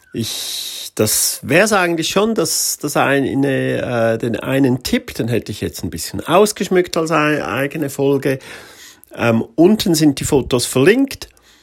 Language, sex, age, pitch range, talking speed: German, male, 40-59, 110-160 Hz, 150 wpm